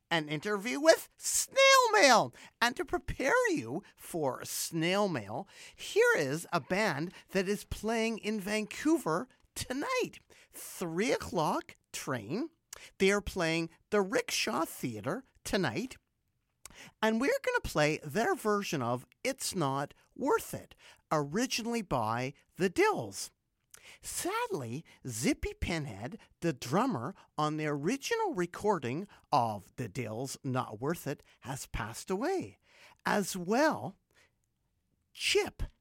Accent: American